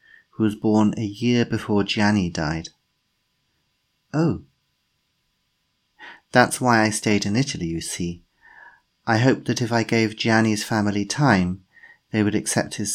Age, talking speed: 40-59, 140 wpm